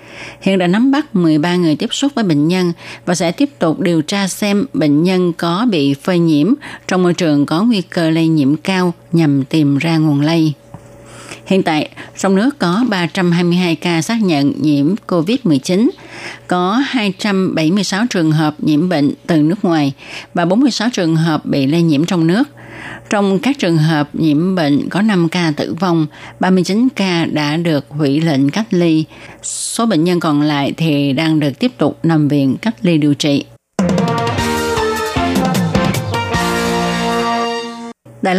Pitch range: 150-195 Hz